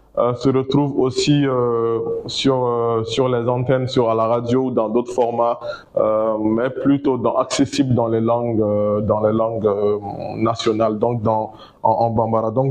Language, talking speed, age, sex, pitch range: French, 180 wpm, 20-39, male, 120-160 Hz